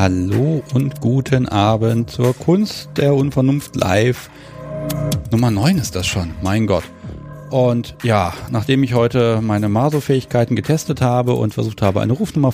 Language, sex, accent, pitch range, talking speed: German, male, German, 105-135 Hz, 145 wpm